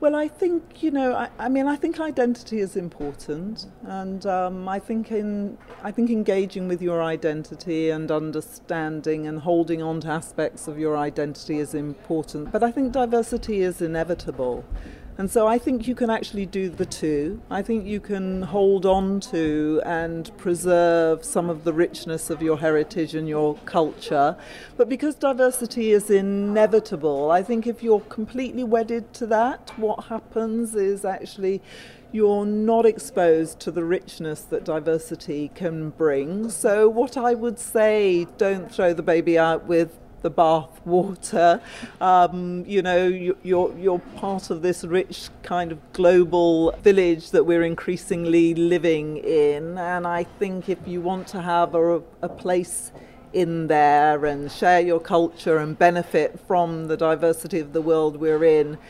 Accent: British